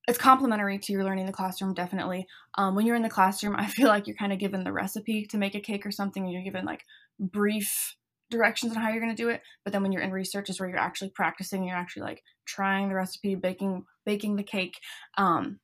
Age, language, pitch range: 20-39, English, 190-225 Hz